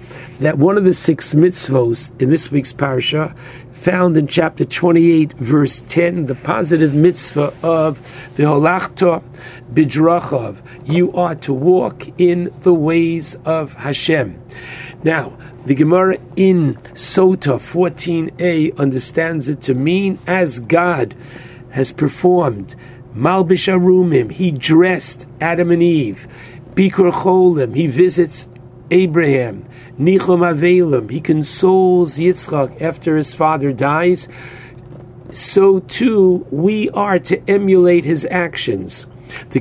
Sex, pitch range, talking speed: male, 130-175 Hz, 110 wpm